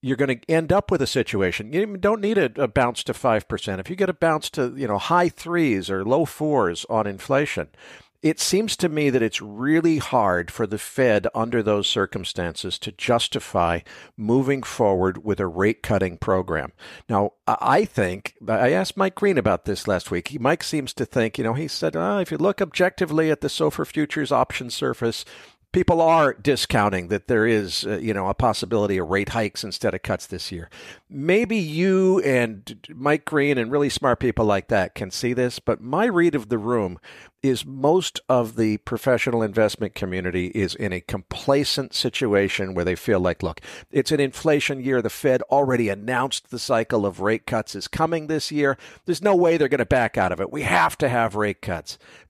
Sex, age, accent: male, 50-69, American